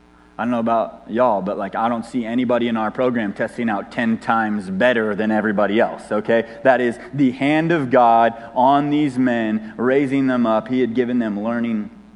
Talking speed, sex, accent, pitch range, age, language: 200 wpm, male, American, 110-145 Hz, 30-49, English